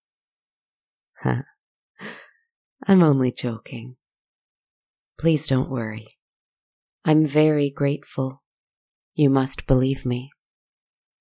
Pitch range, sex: 130-160 Hz, female